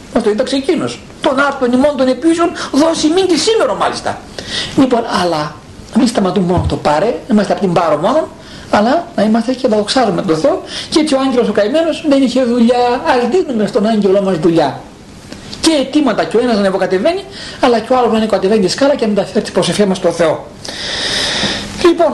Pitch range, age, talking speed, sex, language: 185-270 Hz, 60-79, 205 wpm, male, Greek